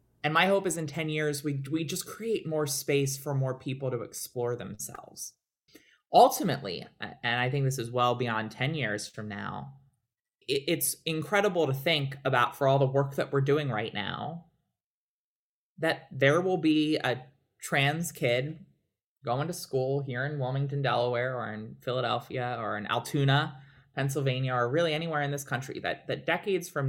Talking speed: 170 wpm